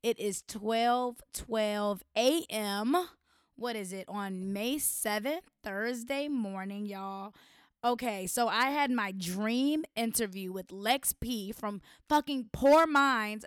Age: 20-39